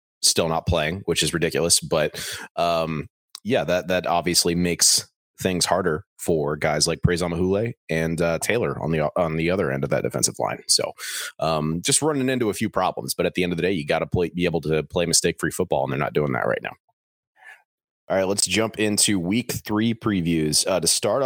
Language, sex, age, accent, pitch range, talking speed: English, male, 30-49, American, 85-100 Hz, 215 wpm